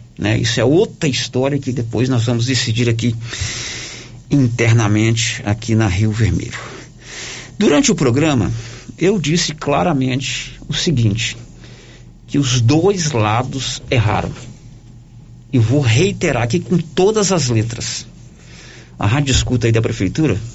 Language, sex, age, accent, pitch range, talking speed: Portuguese, male, 50-69, Brazilian, 115-155 Hz, 125 wpm